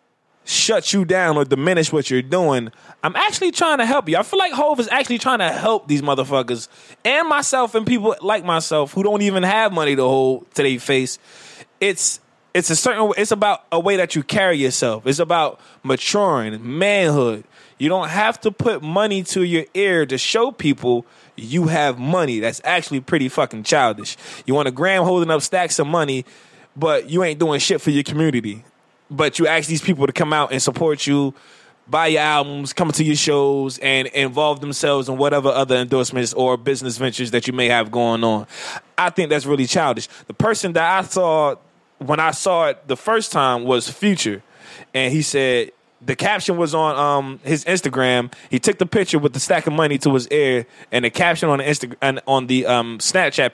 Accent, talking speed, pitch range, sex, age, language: American, 200 wpm, 130-185 Hz, male, 20-39, English